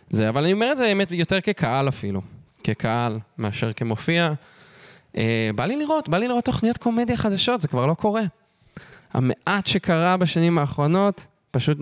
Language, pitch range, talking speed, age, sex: Hebrew, 125-190 Hz, 160 wpm, 20-39, male